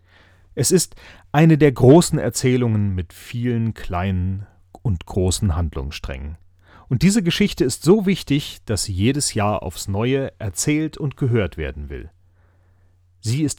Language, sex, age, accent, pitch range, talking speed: German, male, 40-59, German, 90-125 Hz, 135 wpm